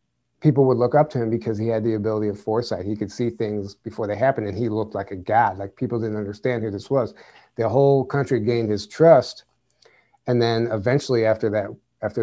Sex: male